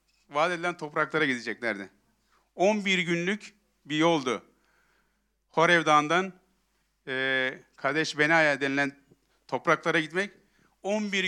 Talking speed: 95 wpm